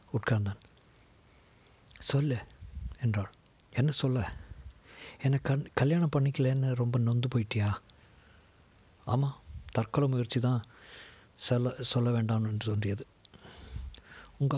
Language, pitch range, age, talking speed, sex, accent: Tamil, 110-130 Hz, 50-69, 90 wpm, male, native